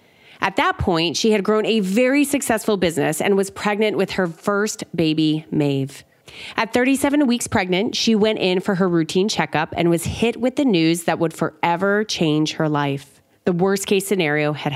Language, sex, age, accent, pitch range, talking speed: English, female, 30-49, American, 165-230 Hz, 185 wpm